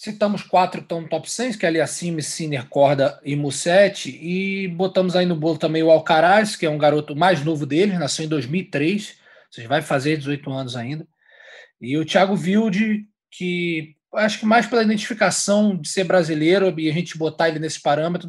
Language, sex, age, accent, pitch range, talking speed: Portuguese, male, 20-39, Brazilian, 140-180 Hz, 195 wpm